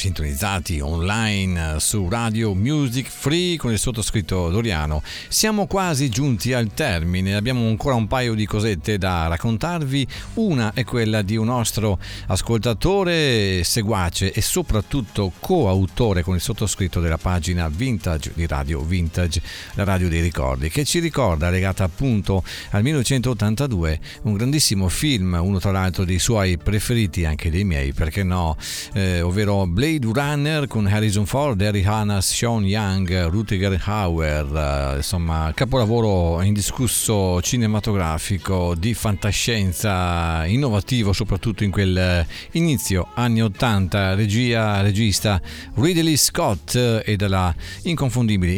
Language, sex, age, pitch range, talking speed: Italian, male, 50-69, 90-115 Hz, 125 wpm